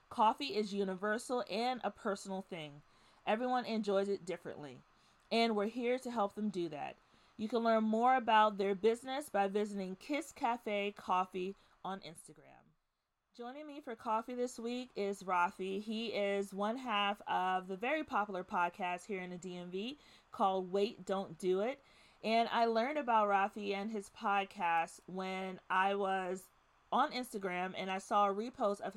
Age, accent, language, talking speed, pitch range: 30-49, American, English, 160 wpm, 190-225 Hz